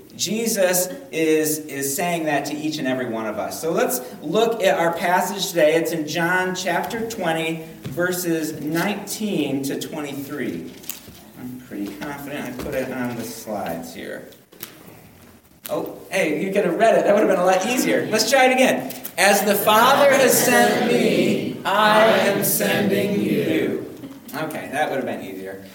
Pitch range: 155-225 Hz